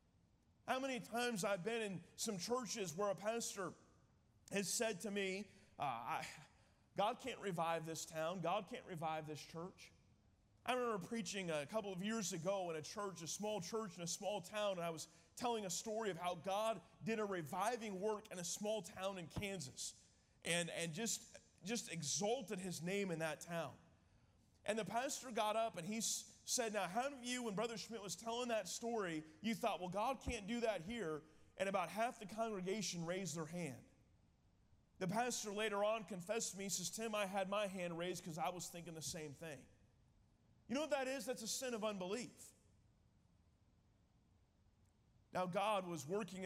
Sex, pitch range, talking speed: male, 160-215 Hz, 190 wpm